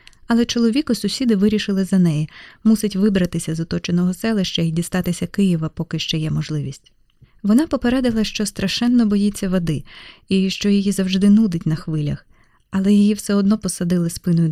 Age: 20-39